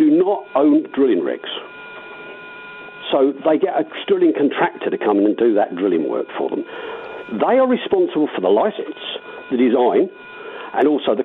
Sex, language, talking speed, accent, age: male, English, 170 wpm, British, 50-69